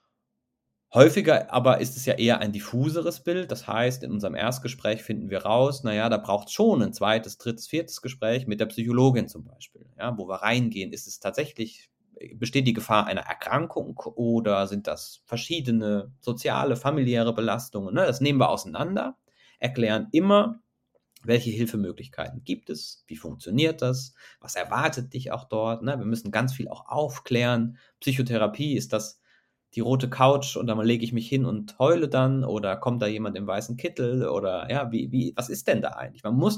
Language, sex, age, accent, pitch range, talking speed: German, male, 30-49, German, 110-135 Hz, 180 wpm